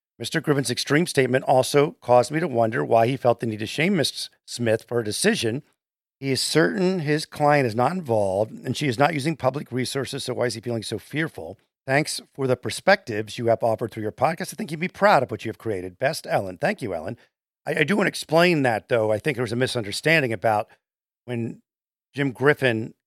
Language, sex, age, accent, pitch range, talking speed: English, male, 50-69, American, 120-150 Hz, 225 wpm